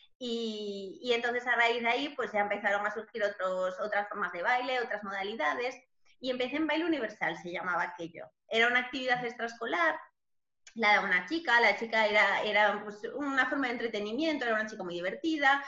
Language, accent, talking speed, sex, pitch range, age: Spanish, Spanish, 190 wpm, female, 205-255 Hz, 20-39